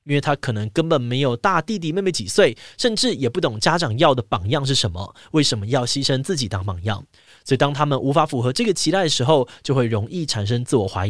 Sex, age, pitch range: male, 20-39, 115-170 Hz